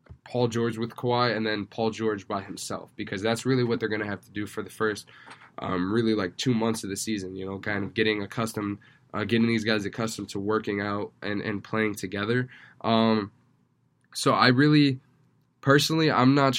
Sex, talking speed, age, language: male, 205 wpm, 10-29, English